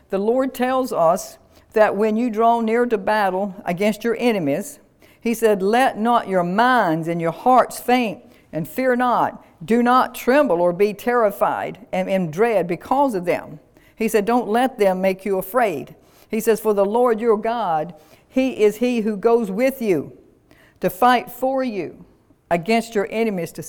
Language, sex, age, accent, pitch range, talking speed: English, female, 60-79, American, 185-230 Hz, 175 wpm